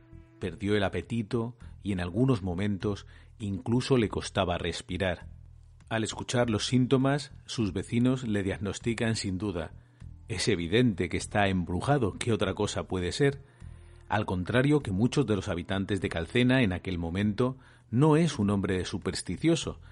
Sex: male